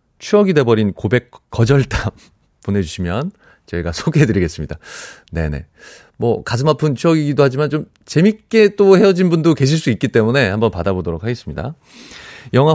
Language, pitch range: Korean, 95-150 Hz